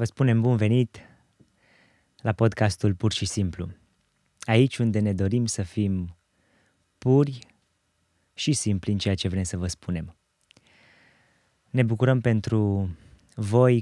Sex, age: male, 20-39